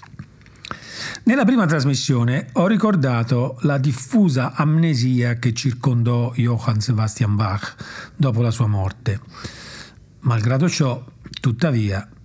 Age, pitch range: 40-59, 115-145 Hz